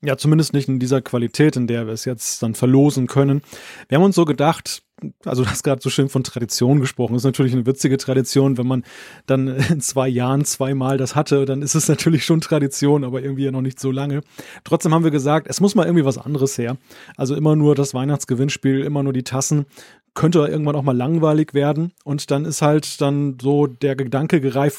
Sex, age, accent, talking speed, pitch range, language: male, 30-49, German, 220 wpm, 135-160 Hz, German